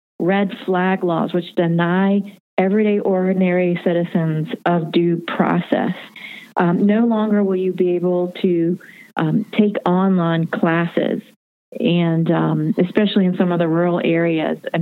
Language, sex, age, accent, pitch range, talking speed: English, female, 40-59, American, 175-205 Hz, 135 wpm